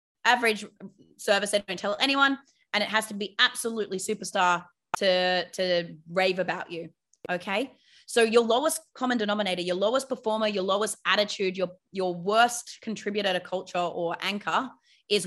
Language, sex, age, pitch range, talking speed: English, female, 20-39, 185-230 Hz, 155 wpm